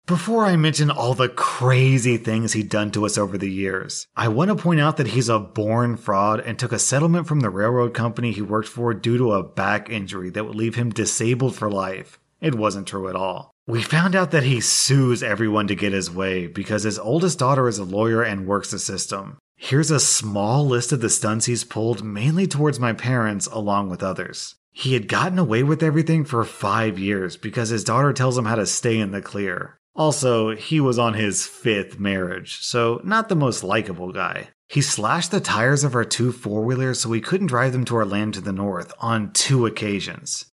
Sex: male